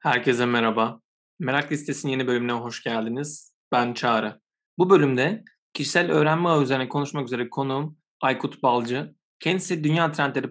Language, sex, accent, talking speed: Turkish, male, native, 130 wpm